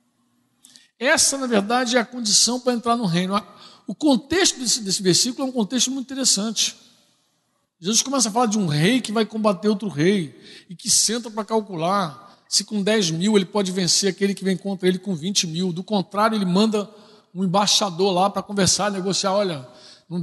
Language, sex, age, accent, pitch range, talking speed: Portuguese, male, 60-79, Brazilian, 190-255 Hz, 190 wpm